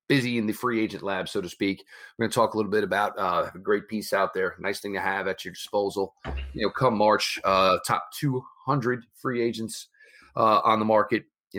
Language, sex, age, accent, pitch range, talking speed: English, male, 30-49, American, 110-150 Hz, 225 wpm